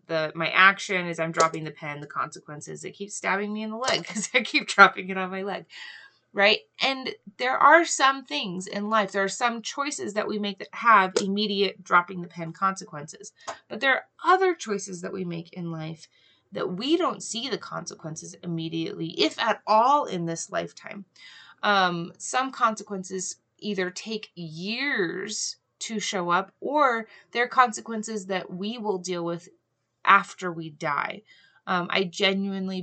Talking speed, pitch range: 170 wpm, 170-210 Hz